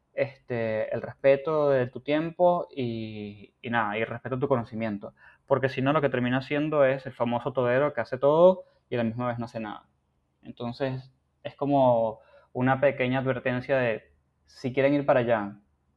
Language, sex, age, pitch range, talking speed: Spanish, male, 10-29, 120-150 Hz, 185 wpm